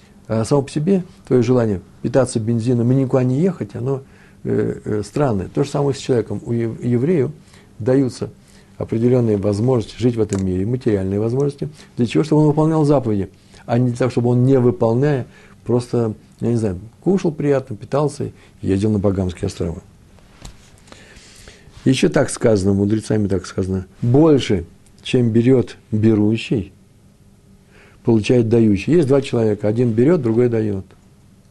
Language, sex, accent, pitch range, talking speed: Russian, male, native, 100-130 Hz, 140 wpm